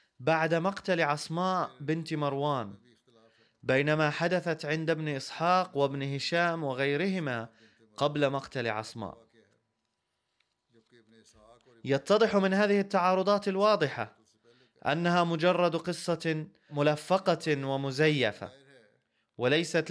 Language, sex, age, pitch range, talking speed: Arabic, male, 20-39, 135-180 Hz, 80 wpm